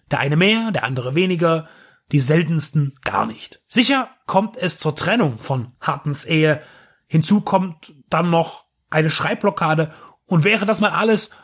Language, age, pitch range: German, 30-49, 155-210 Hz